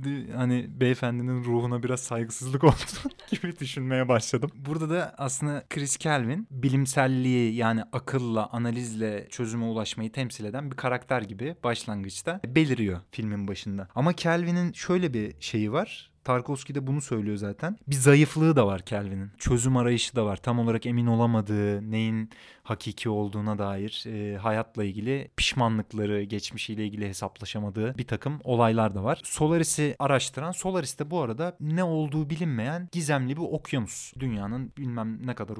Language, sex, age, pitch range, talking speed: Turkish, male, 30-49, 110-145 Hz, 140 wpm